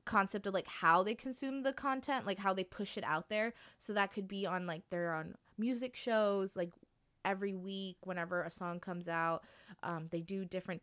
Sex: female